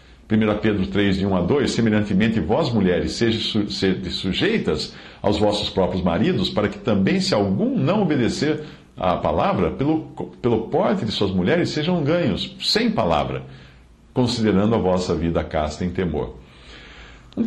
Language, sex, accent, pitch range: English, male, Brazilian, 75-115 Hz